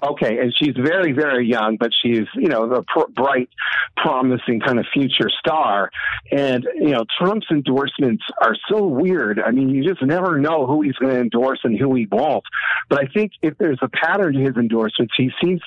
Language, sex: English, male